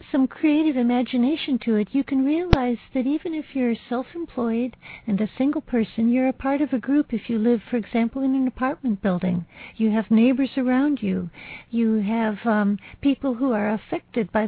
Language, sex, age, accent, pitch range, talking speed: English, female, 60-79, American, 220-265 Hz, 185 wpm